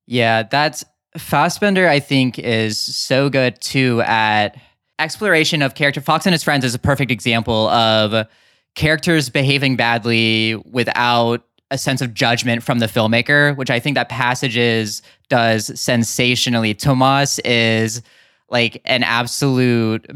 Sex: male